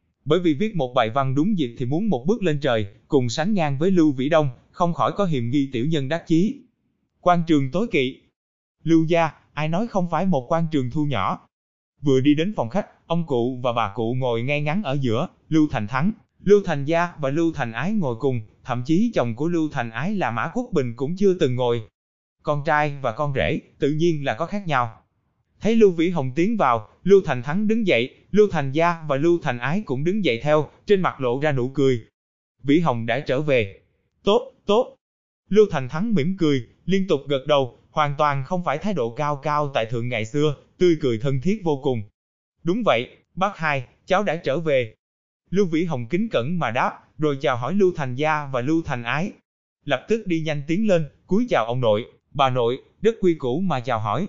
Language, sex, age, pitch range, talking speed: Vietnamese, male, 20-39, 130-175 Hz, 225 wpm